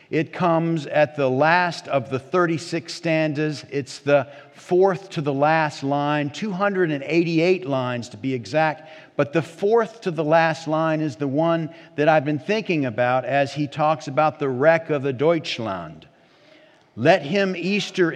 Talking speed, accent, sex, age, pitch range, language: 160 wpm, American, male, 50-69, 145-180 Hz, English